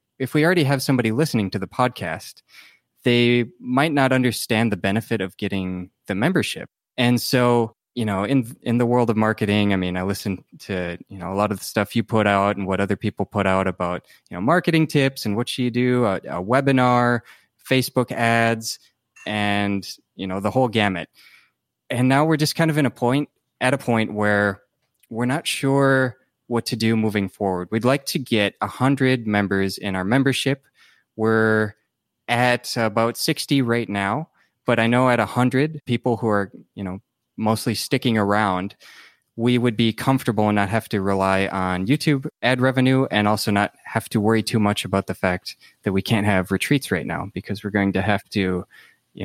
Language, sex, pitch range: English, male, 100-125 Hz